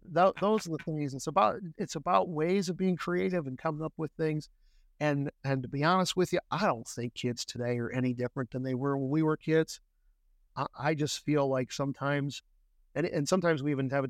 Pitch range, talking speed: 125-150 Hz, 225 wpm